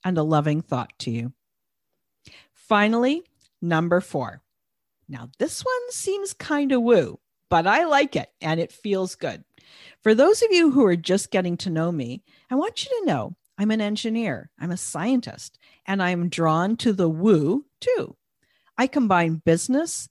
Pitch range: 165-260 Hz